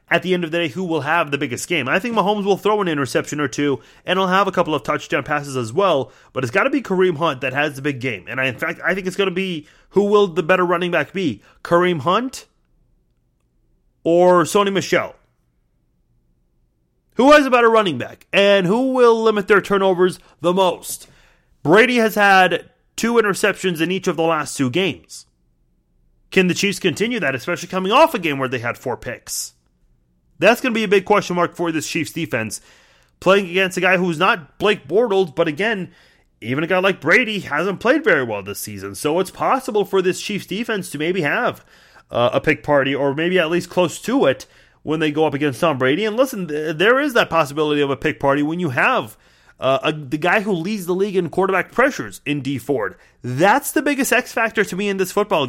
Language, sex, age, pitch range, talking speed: English, male, 30-49, 145-200 Hz, 220 wpm